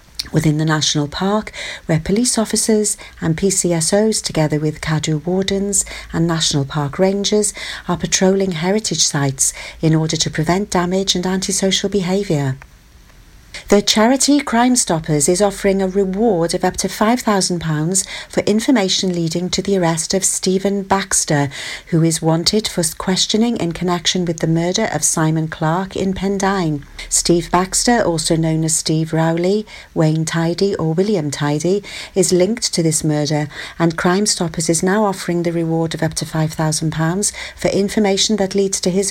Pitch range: 160-200 Hz